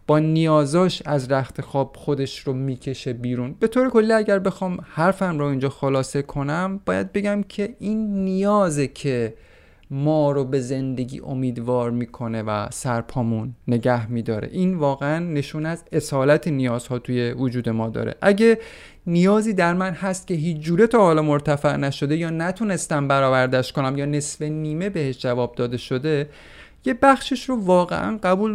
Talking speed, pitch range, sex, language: 155 wpm, 135-185 Hz, male, Persian